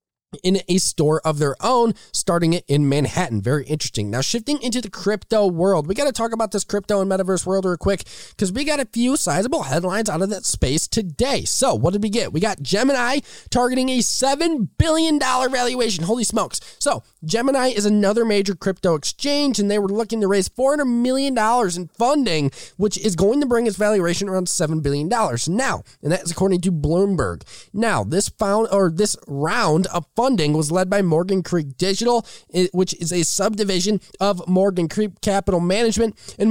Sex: male